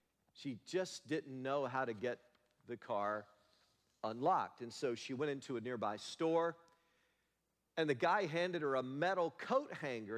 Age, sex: 50-69, male